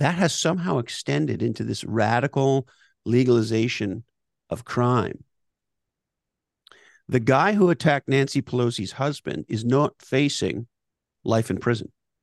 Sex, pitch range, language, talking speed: male, 105-135 Hz, English, 115 wpm